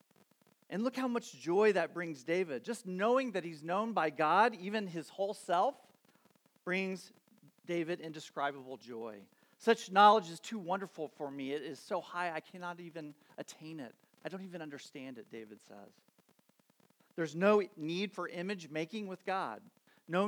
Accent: American